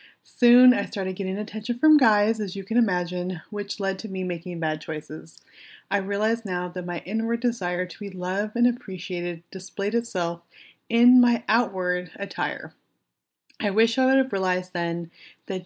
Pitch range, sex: 180-220 Hz, female